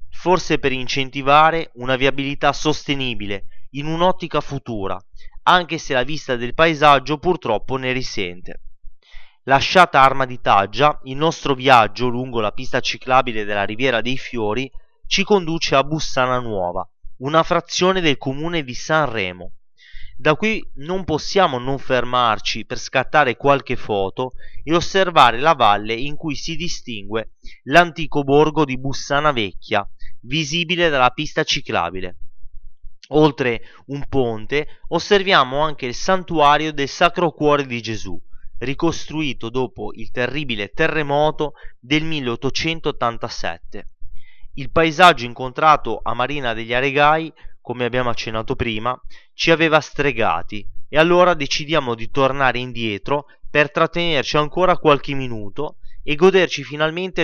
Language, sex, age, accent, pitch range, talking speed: Italian, male, 30-49, native, 120-155 Hz, 125 wpm